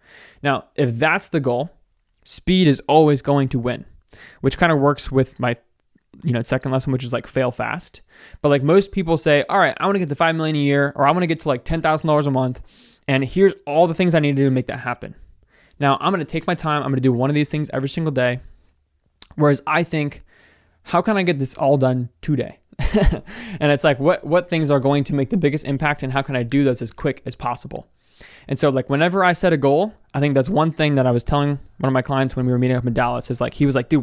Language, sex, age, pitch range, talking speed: English, male, 20-39, 130-155 Hz, 265 wpm